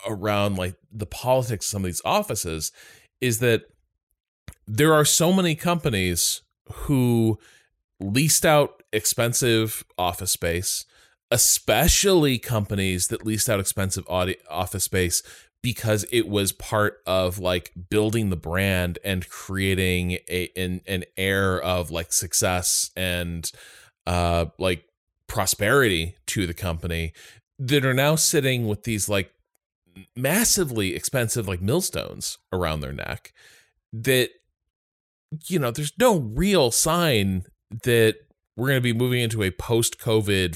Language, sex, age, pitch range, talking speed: English, male, 20-39, 90-125 Hz, 125 wpm